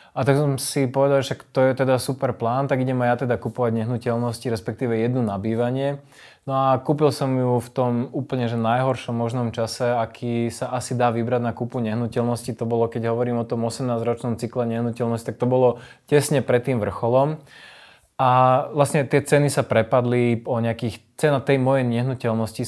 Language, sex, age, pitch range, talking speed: Slovak, male, 20-39, 115-135 Hz, 185 wpm